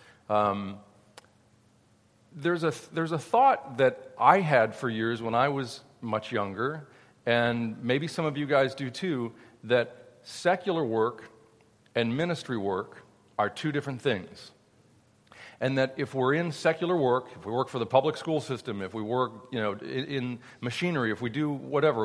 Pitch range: 115-150 Hz